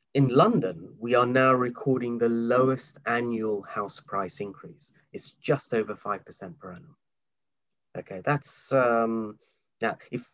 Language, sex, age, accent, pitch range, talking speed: English, male, 30-49, British, 110-140 Hz, 130 wpm